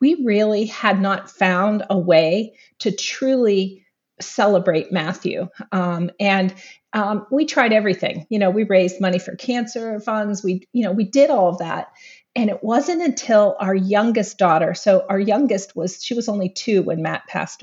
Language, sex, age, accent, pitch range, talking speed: English, female, 40-59, American, 190-240 Hz, 175 wpm